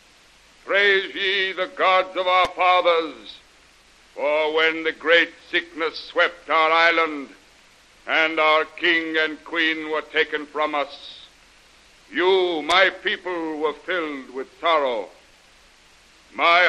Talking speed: 115 wpm